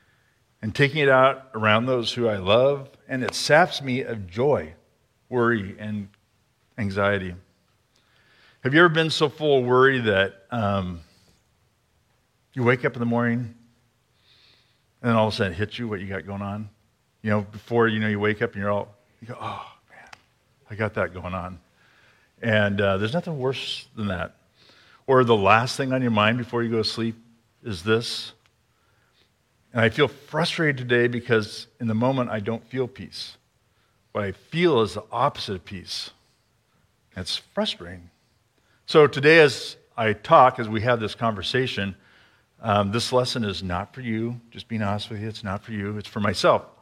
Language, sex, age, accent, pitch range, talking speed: English, male, 50-69, American, 105-125 Hz, 180 wpm